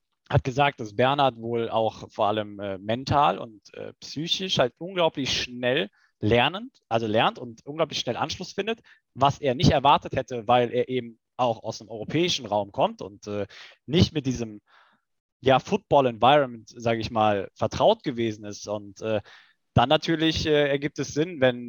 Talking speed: 165 wpm